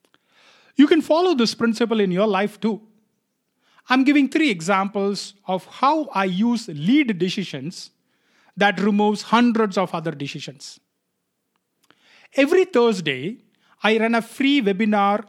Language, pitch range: English, 200-250 Hz